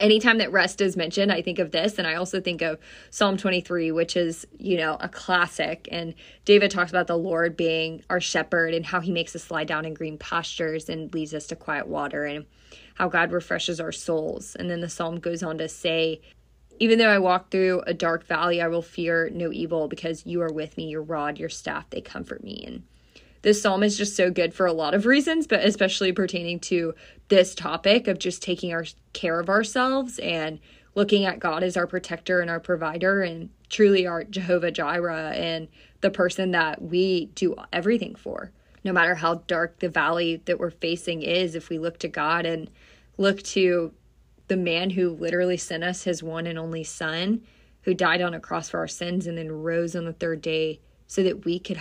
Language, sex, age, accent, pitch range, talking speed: English, female, 20-39, American, 165-185 Hz, 210 wpm